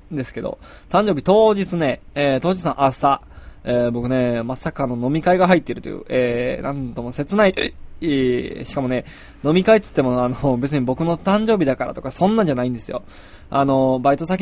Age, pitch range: 20-39, 125-170 Hz